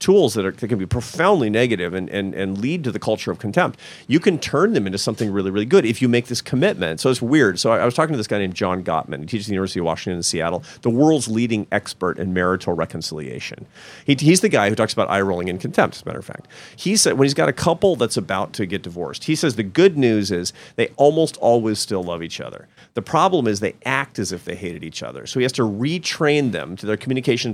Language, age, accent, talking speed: English, 40-59, American, 265 wpm